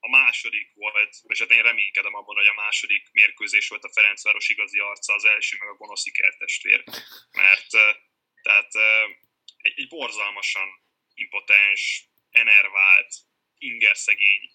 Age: 10-29